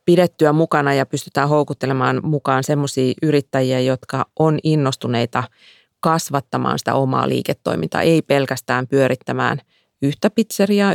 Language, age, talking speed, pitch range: Finnish, 30-49, 110 wpm, 135-165 Hz